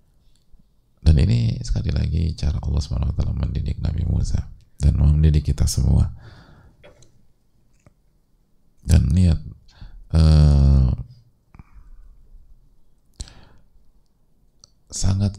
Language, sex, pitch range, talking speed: English, male, 75-90 Hz, 70 wpm